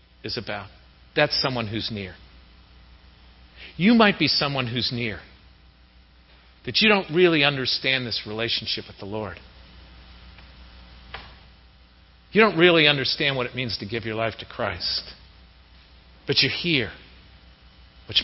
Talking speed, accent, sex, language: 130 wpm, American, male, English